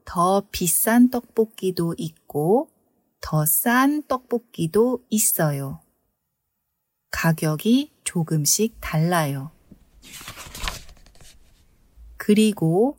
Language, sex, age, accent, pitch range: Korean, female, 30-49, native, 155-230 Hz